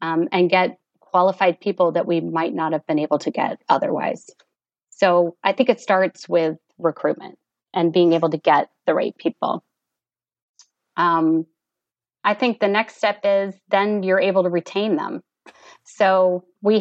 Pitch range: 165-200 Hz